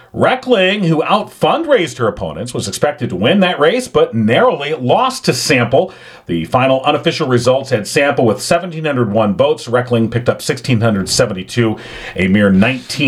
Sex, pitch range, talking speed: male, 115-160 Hz, 135 wpm